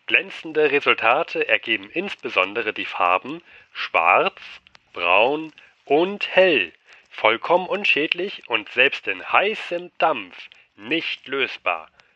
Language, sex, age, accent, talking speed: German, male, 40-59, German, 95 wpm